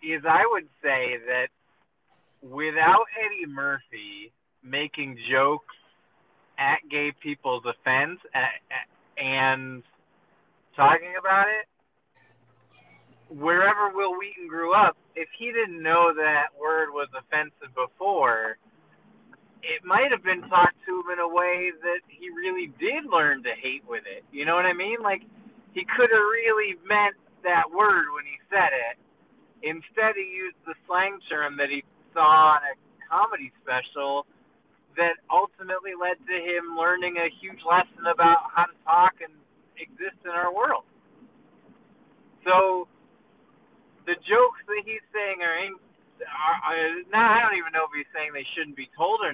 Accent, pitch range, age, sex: American, 155-215 Hz, 30-49, male